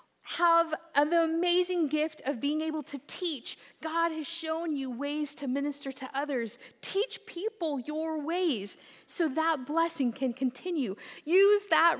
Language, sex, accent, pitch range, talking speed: English, female, American, 245-335 Hz, 145 wpm